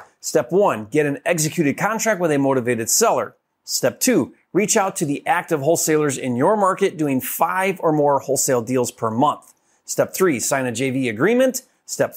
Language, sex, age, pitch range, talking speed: English, male, 30-49, 140-205 Hz, 180 wpm